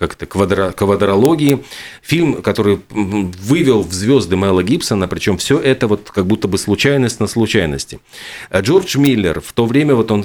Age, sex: 40-59, male